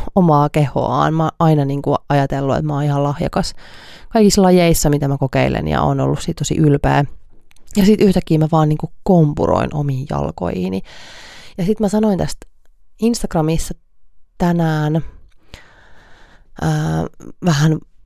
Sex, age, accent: female, 30-49, native